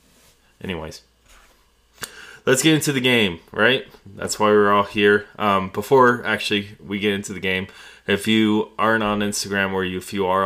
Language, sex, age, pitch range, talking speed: English, male, 20-39, 85-100 Hz, 165 wpm